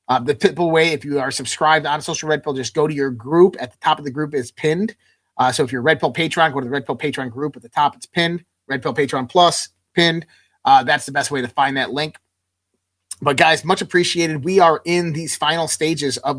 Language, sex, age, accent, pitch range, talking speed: English, male, 30-49, American, 130-155 Hz, 255 wpm